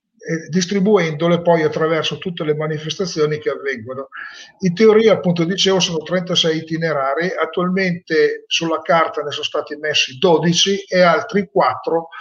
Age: 50-69